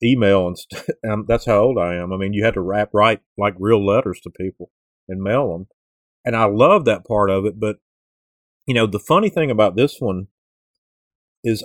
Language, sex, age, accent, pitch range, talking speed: English, male, 40-59, American, 95-125 Hz, 210 wpm